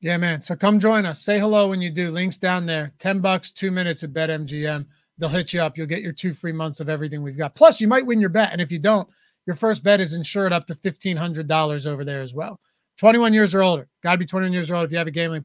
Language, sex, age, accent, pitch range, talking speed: English, male, 30-49, American, 170-210 Hz, 285 wpm